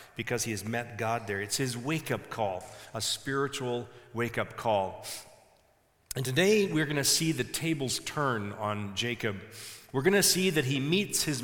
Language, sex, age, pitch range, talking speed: English, male, 40-59, 115-155 Hz, 170 wpm